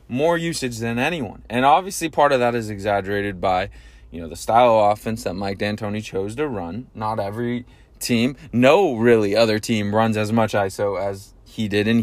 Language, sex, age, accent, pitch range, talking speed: English, male, 20-39, American, 105-145 Hz, 195 wpm